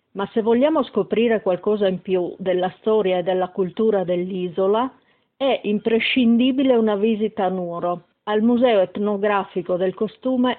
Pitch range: 185-225 Hz